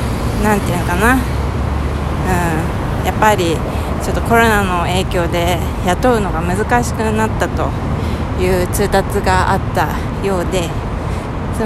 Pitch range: 175-245 Hz